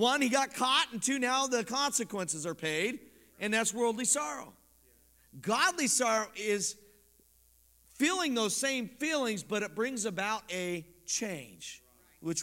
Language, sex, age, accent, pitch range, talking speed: English, male, 50-69, American, 150-235 Hz, 140 wpm